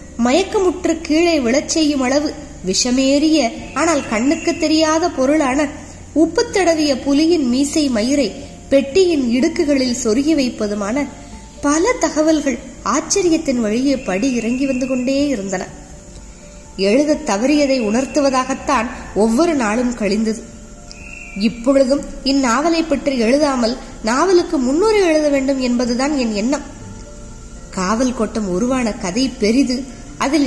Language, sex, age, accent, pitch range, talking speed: Tamil, female, 20-39, native, 230-300 Hz, 90 wpm